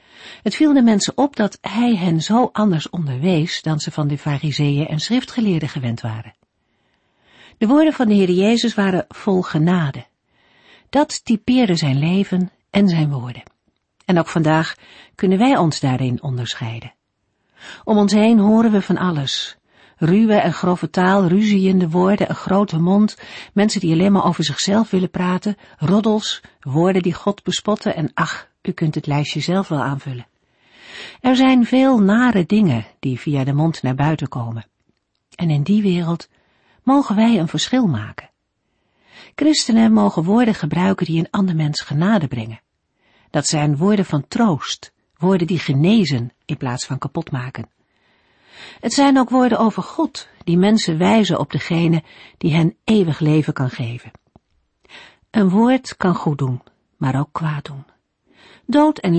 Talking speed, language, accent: 155 wpm, Dutch, Dutch